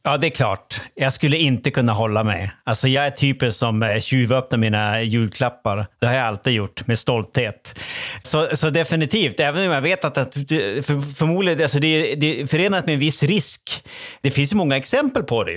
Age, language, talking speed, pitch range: 30-49, Swedish, 195 wpm, 115-150 Hz